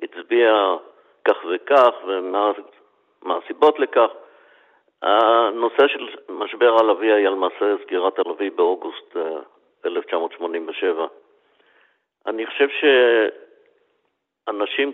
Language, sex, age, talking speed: Hebrew, male, 50-69, 75 wpm